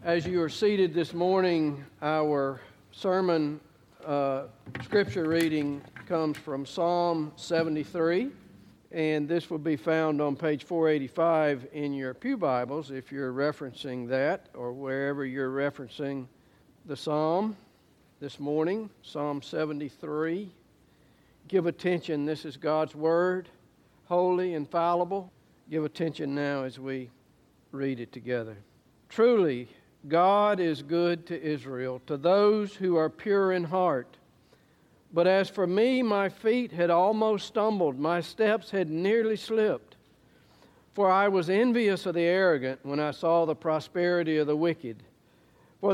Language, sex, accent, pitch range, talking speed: English, male, American, 145-180 Hz, 130 wpm